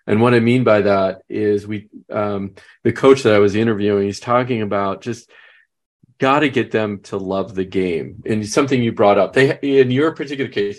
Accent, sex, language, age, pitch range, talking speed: American, male, English, 40-59, 100-120 Hz, 205 wpm